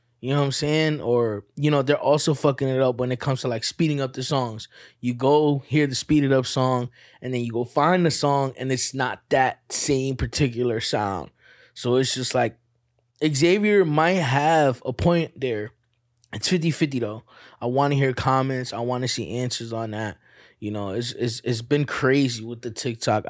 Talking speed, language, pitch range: 205 wpm, English, 120-135 Hz